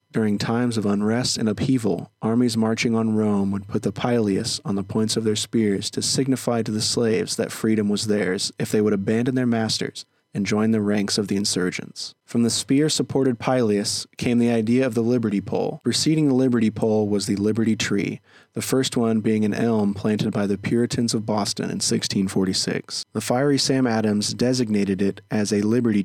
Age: 20-39